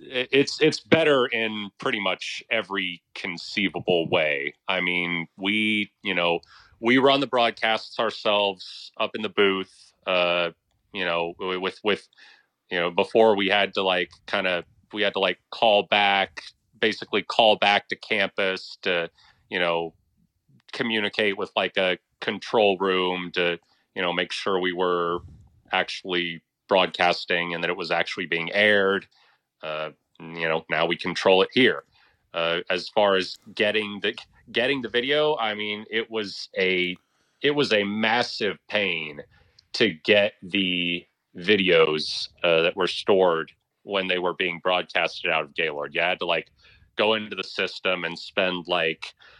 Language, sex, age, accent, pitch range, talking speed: English, male, 30-49, American, 85-105 Hz, 155 wpm